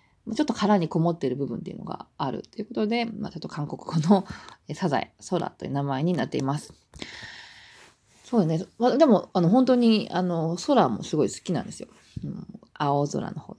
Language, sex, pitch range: Japanese, female, 145-200 Hz